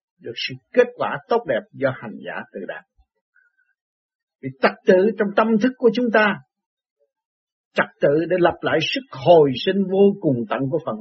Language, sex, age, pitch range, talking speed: Vietnamese, male, 60-79, 150-230 Hz, 180 wpm